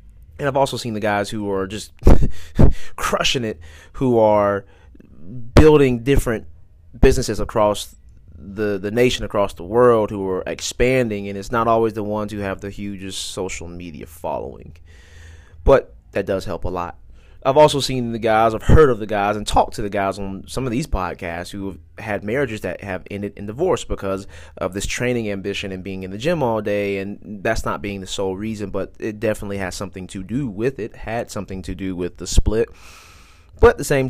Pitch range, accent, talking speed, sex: 90-110 Hz, American, 200 wpm, male